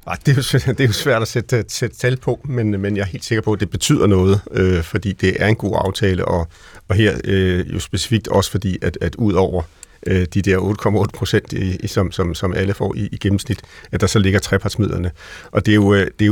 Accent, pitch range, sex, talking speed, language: native, 95-110 Hz, male, 245 wpm, Danish